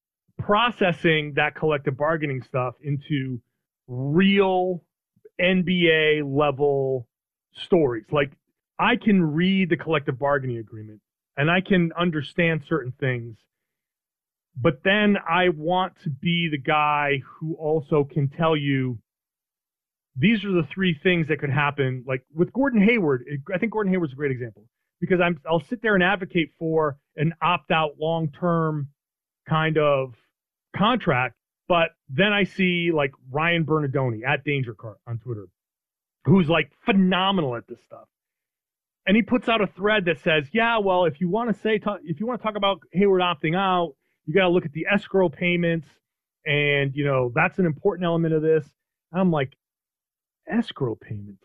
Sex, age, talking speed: male, 30-49, 155 wpm